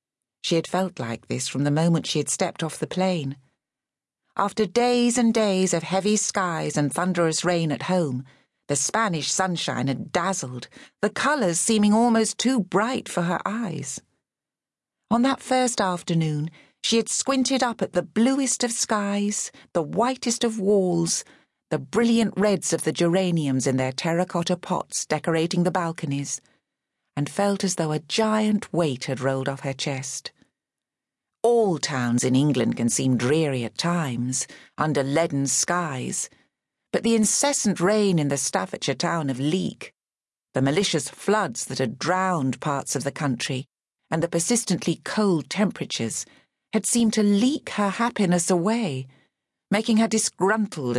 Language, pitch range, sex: English, 140-210 Hz, female